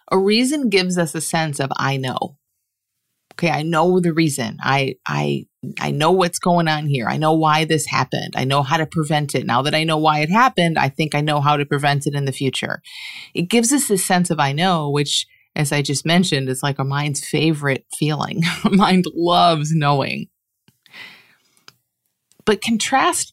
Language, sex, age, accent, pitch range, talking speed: English, female, 30-49, American, 140-185 Hz, 195 wpm